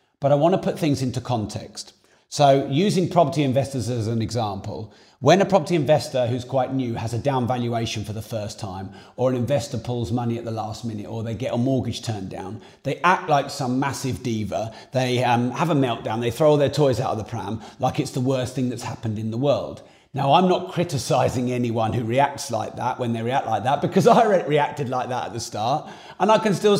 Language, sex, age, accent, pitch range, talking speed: English, male, 40-59, British, 115-145 Hz, 230 wpm